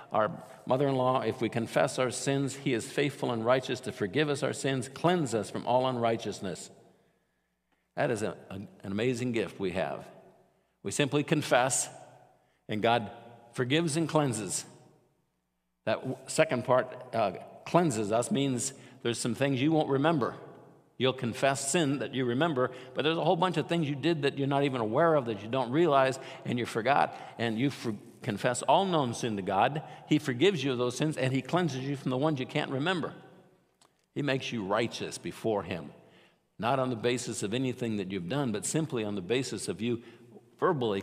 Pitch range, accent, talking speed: 115-140 Hz, American, 185 wpm